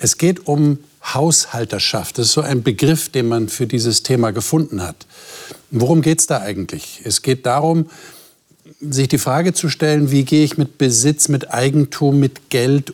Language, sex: German, male